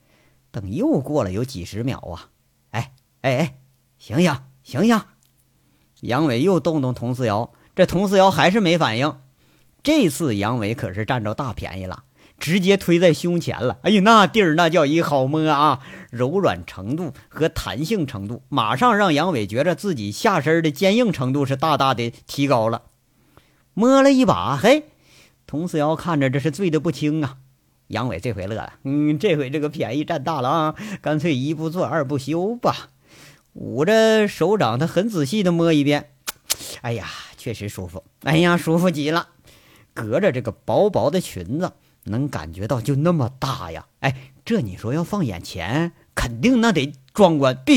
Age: 50-69